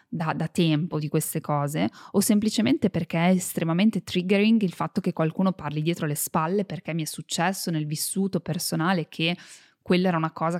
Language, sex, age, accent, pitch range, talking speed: Italian, female, 20-39, native, 160-195 Hz, 180 wpm